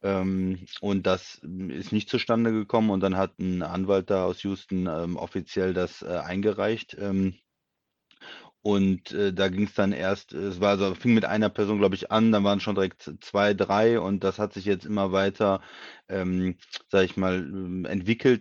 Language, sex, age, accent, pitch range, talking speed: German, male, 30-49, German, 95-105 Hz, 175 wpm